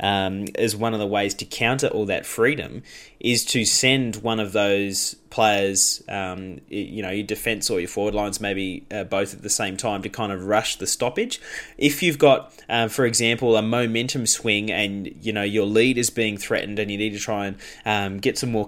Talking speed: 210 wpm